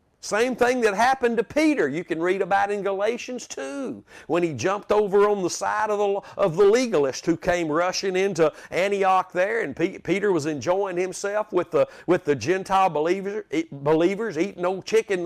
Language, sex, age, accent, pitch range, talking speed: English, male, 50-69, American, 175-235 Hz, 195 wpm